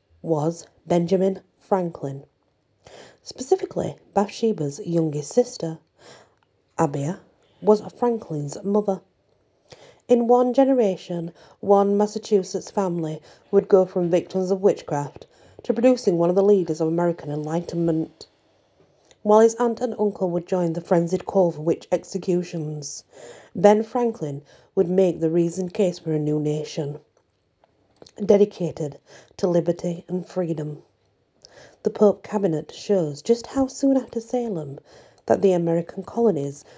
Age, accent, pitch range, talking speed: 40-59, British, 155-205 Hz, 120 wpm